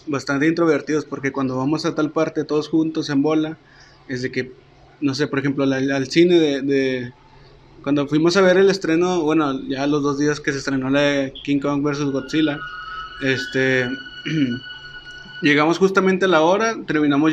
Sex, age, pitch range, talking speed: male, 20-39, 140-155 Hz, 175 wpm